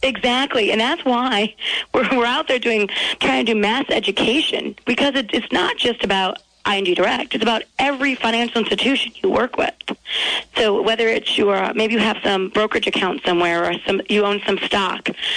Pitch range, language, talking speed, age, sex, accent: 205-265 Hz, English, 185 wpm, 40-59, female, American